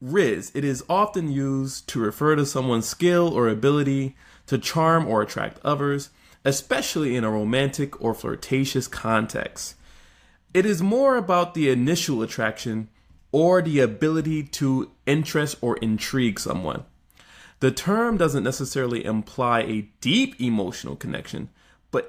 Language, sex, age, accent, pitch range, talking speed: English, male, 20-39, American, 110-140 Hz, 135 wpm